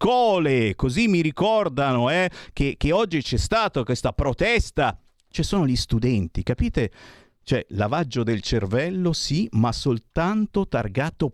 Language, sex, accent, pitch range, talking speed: Italian, male, native, 125-185 Hz, 125 wpm